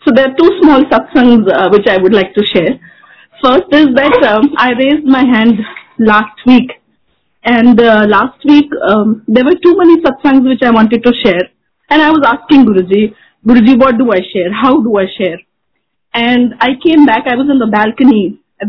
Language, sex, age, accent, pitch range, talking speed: Hindi, female, 30-49, native, 215-275 Hz, 200 wpm